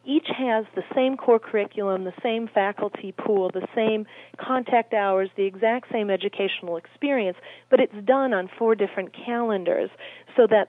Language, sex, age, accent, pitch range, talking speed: English, female, 40-59, American, 185-215 Hz, 155 wpm